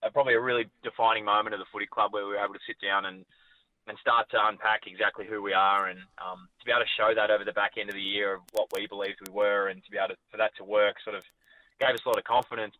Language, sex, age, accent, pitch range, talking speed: English, male, 20-39, Australian, 95-110 Hz, 295 wpm